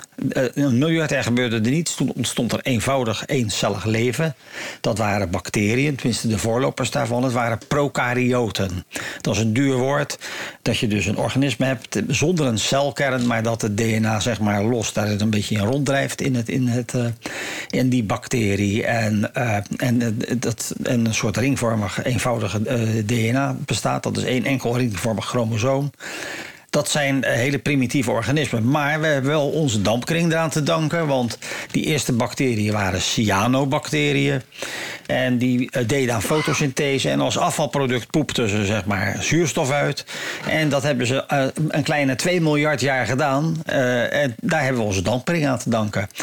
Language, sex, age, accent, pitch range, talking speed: Dutch, male, 50-69, Dutch, 115-140 Hz, 165 wpm